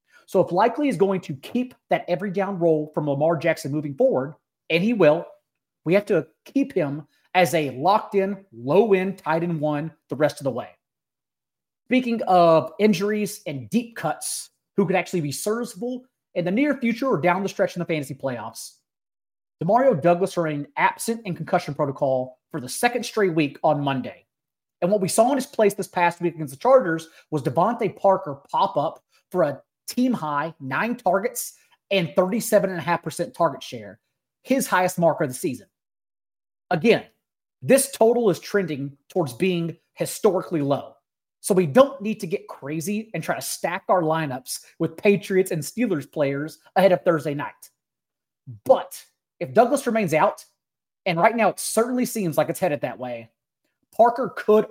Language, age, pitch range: English, 30-49, 150-210 Hz